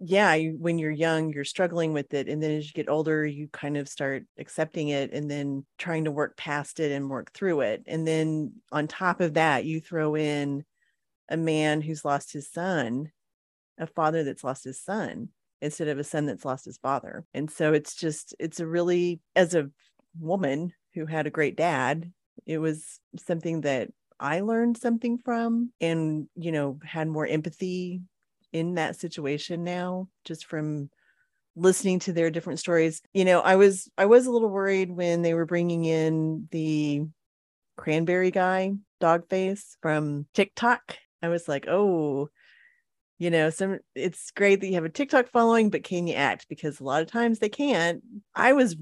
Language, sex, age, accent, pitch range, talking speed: English, female, 30-49, American, 155-190 Hz, 185 wpm